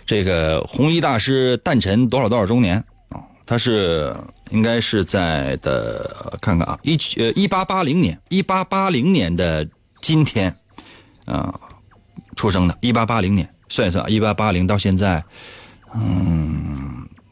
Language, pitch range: Chinese, 95-135 Hz